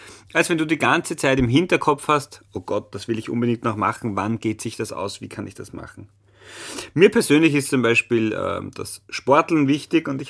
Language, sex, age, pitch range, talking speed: German, male, 30-49, 100-135 Hz, 220 wpm